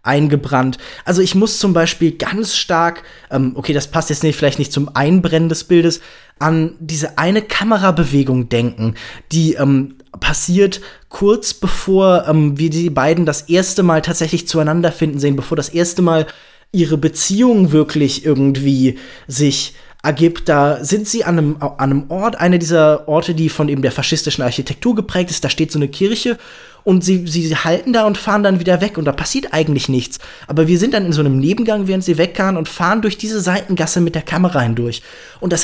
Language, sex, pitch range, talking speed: German, male, 150-185 Hz, 190 wpm